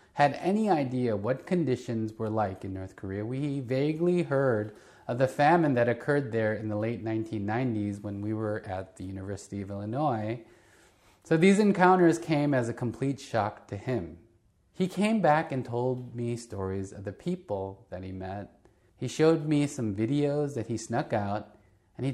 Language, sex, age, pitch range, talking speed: English, male, 30-49, 105-145 Hz, 175 wpm